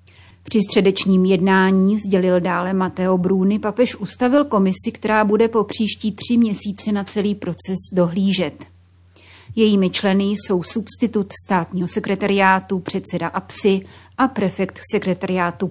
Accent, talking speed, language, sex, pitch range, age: native, 120 wpm, Czech, female, 180-205 Hz, 30-49